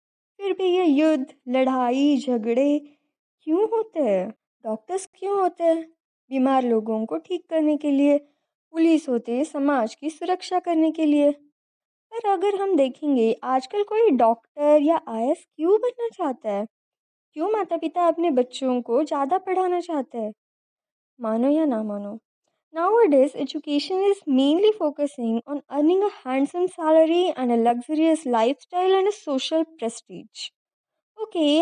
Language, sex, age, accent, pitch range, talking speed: Hindi, female, 20-39, native, 255-360 Hz, 140 wpm